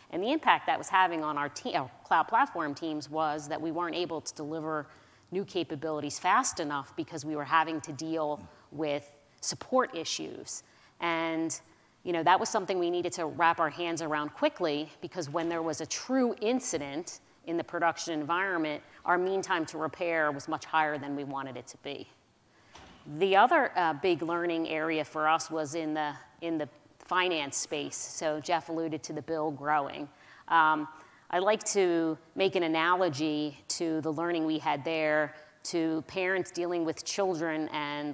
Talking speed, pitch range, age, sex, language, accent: 180 wpm, 155-185 Hz, 40-59, female, English, American